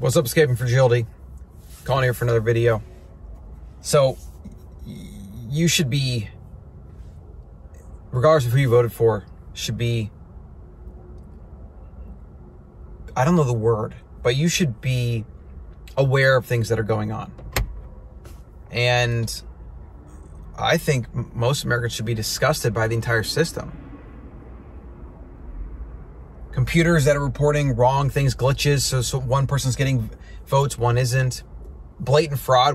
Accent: American